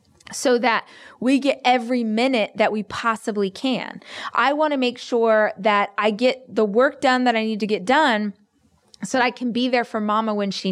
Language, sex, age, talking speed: English, female, 20-39, 205 wpm